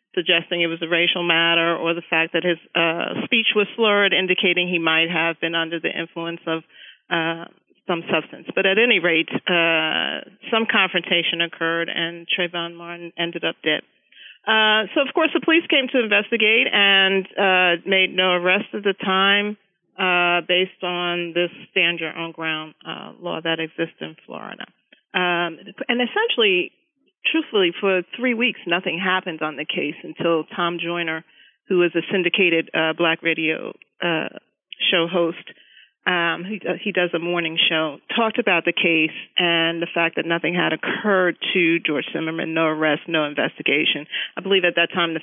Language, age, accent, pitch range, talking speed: English, 40-59, American, 165-195 Hz, 170 wpm